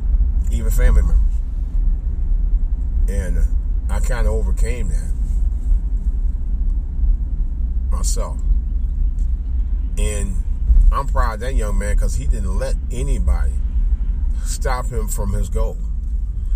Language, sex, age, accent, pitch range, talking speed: English, male, 30-49, American, 65-85 Hz, 100 wpm